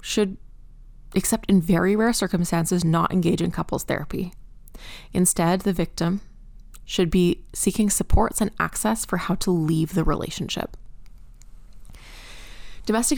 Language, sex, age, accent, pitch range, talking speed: English, female, 20-39, American, 170-215 Hz, 125 wpm